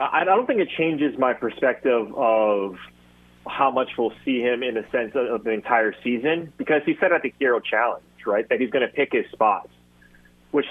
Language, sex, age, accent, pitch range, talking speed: English, male, 30-49, American, 105-135 Hz, 205 wpm